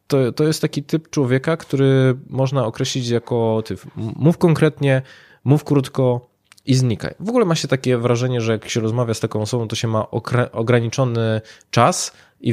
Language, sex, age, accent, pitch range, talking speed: Polish, male, 20-39, native, 105-135 Hz, 170 wpm